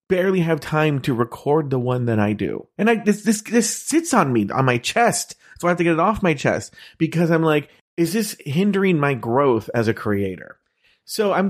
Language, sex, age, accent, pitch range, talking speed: English, male, 30-49, American, 110-165 Hz, 225 wpm